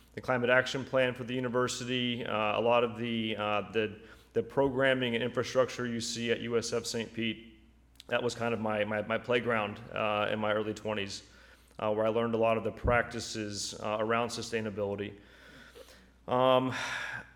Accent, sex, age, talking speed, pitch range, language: American, male, 30-49, 175 wpm, 115-130 Hz, English